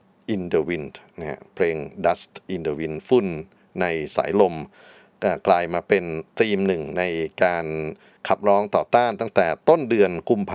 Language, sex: Thai, male